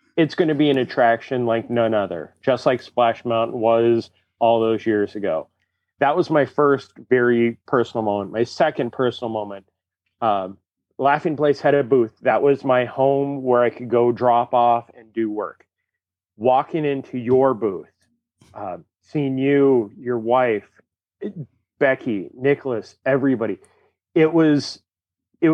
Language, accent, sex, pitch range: English, American, male, 115-140 Hz